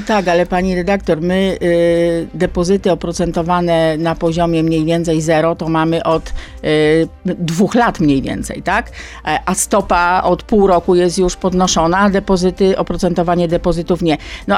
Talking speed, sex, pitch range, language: 135 wpm, female, 170-205 Hz, Polish